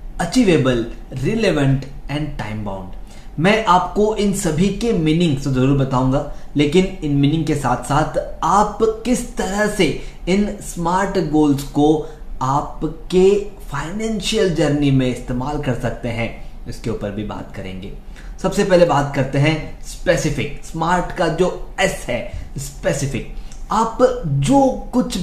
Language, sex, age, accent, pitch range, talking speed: Hindi, male, 20-39, native, 140-200 Hz, 130 wpm